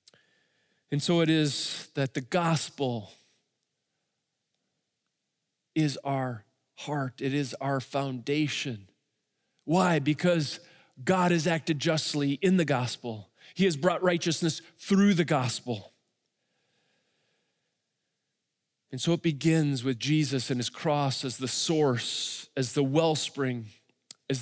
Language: English